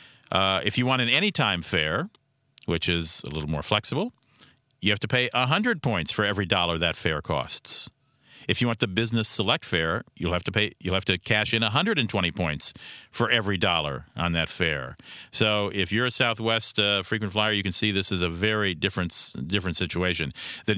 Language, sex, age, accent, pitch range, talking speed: English, male, 50-69, American, 95-120 Hz, 195 wpm